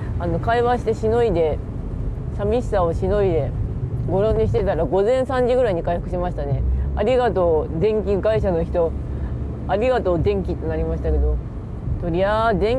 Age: 20-39